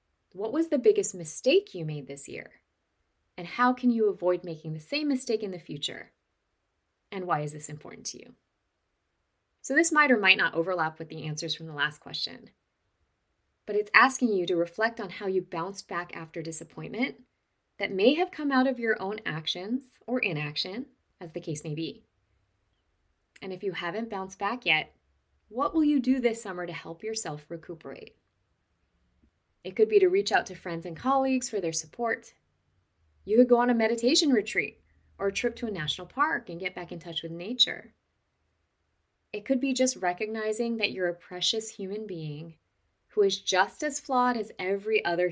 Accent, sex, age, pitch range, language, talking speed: American, female, 20-39, 155-235 Hz, English, 185 wpm